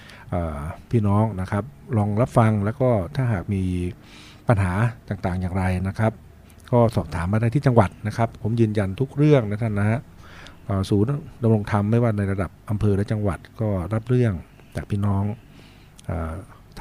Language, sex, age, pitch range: Thai, male, 60-79, 95-115 Hz